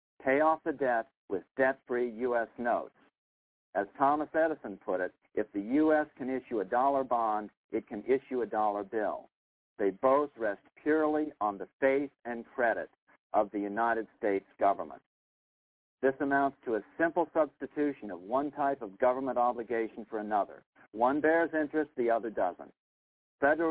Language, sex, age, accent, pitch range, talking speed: English, male, 50-69, American, 110-145 Hz, 155 wpm